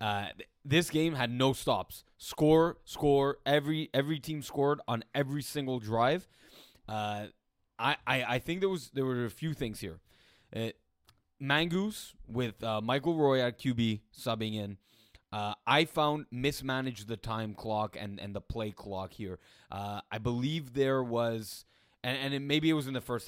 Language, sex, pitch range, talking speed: English, male, 110-145 Hz, 170 wpm